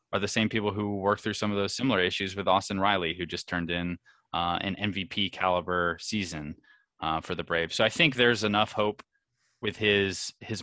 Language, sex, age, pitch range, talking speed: English, male, 20-39, 90-105 Hz, 205 wpm